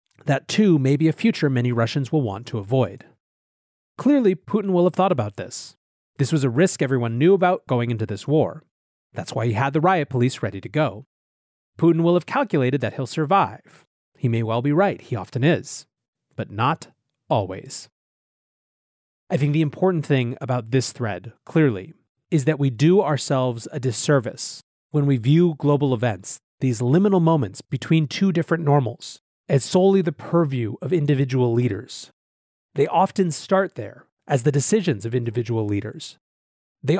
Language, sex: English, male